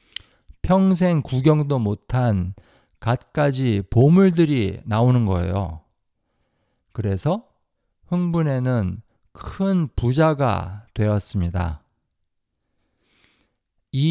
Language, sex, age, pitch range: Korean, male, 50-69, 95-145 Hz